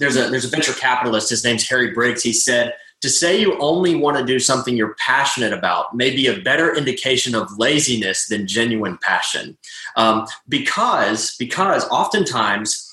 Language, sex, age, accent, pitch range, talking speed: English, male, 30-49, American, 115-160 Hz, 170 wpm